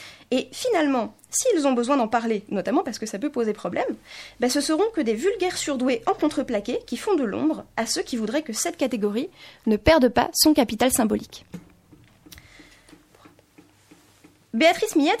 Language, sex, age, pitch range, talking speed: French, female, 20-39, 235-315 Hz, 165 wpm